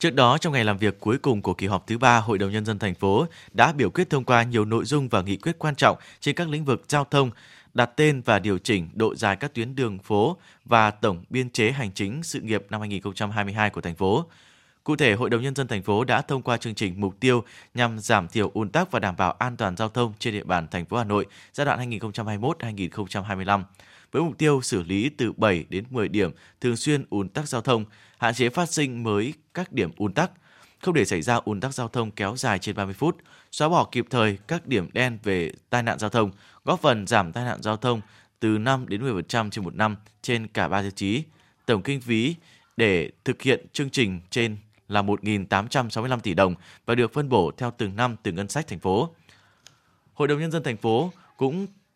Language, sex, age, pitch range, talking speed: Vietnamese, male, 20-39, 105-135 Hz, 230 wpm